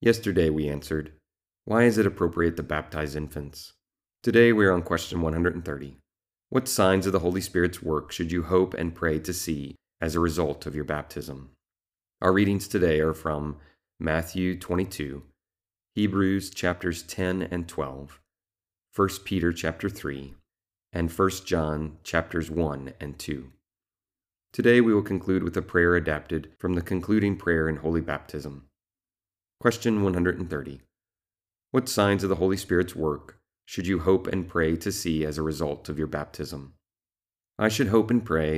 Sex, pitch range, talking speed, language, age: male, 75-95 Hz, 155 wpm, English, 30-49